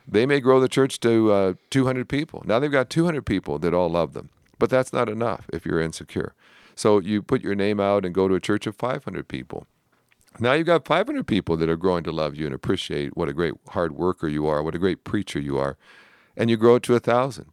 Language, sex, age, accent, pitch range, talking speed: English, male, 50-69, American, 95-125 Hz, 245 wpm